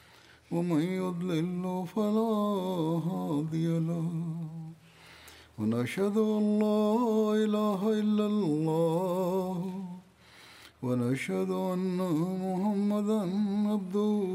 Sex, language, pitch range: male, Swahili, 165-205 Hz